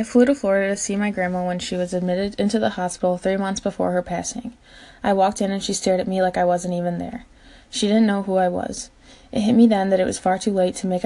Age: 20-39